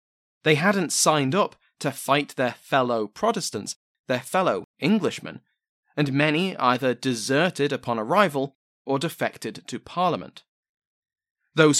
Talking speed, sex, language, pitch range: 115 wpm, male, English, 125-150 Hz